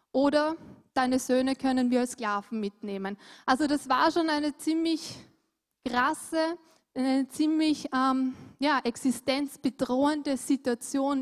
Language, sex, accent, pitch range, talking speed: German, female, German, 245-290 Hz, 110 wpm